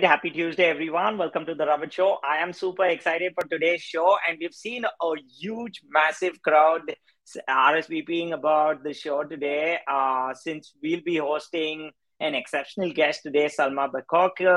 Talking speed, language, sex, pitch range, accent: 155 wpm, English, male, 150-170 Hz, Indian